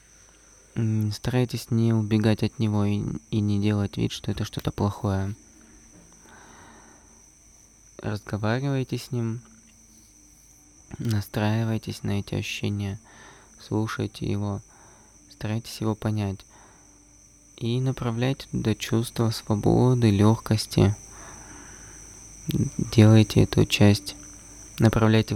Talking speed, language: 85 wpm, English